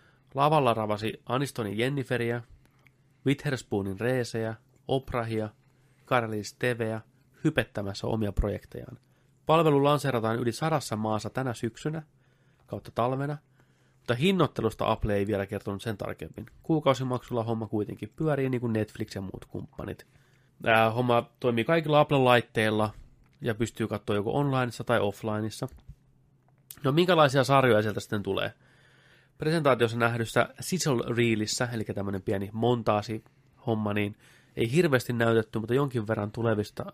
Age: 30-49